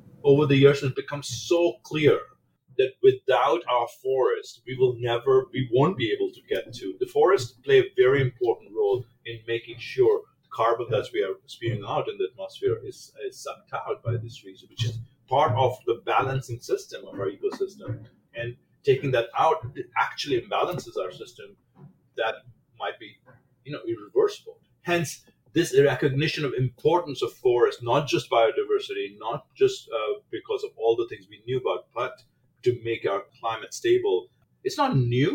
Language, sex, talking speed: English, male, 175 wpm